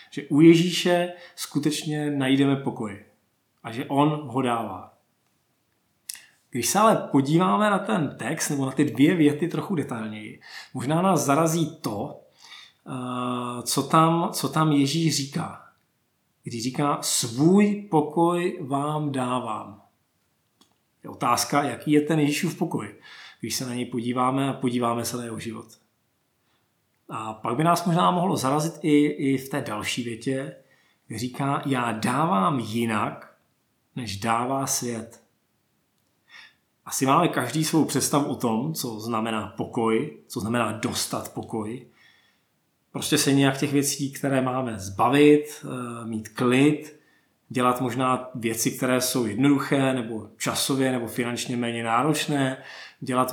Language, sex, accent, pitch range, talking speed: Czech, male, native, 120-150 Hz, 130 wpm